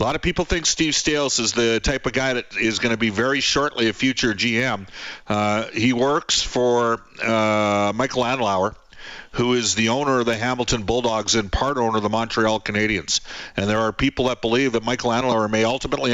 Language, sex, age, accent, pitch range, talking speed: English, male, 50-69, American, 100-120 Hz, 205 wpm